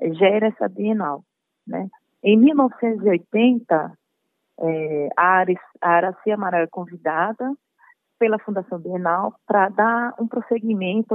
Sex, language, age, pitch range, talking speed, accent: female, Portuguese, 30-49, 175-225 Hz, 100 wpm, Brazilian